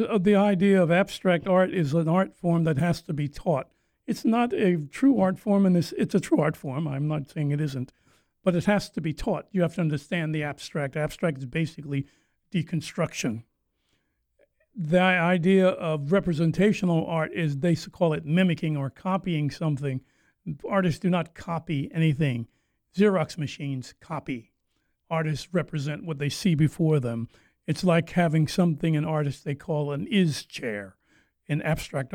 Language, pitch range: English, 150-185 Hz